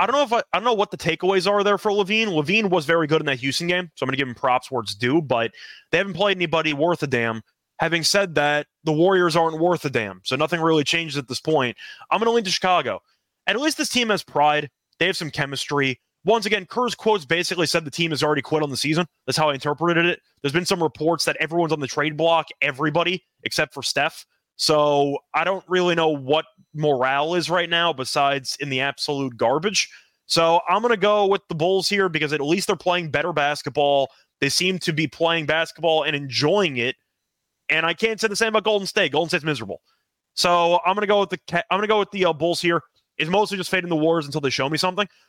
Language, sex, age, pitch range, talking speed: English, male, 20-39, 145-185 Hz, 240 wpm